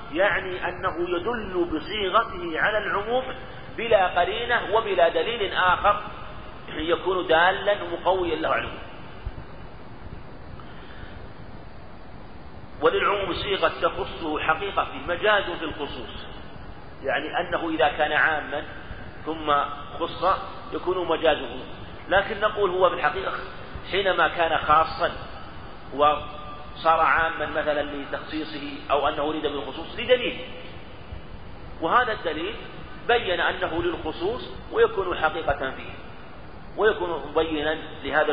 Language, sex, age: Arabic, male, 40-59